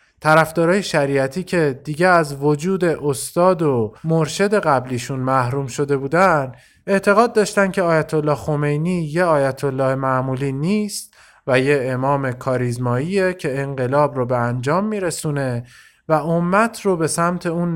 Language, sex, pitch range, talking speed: Persian, male, 120-160 Hz, 135 wpm